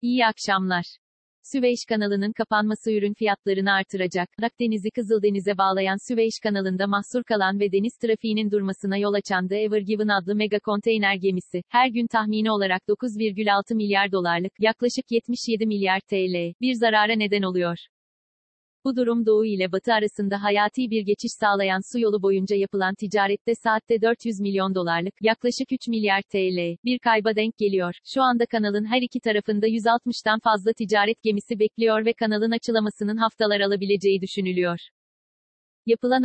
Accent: native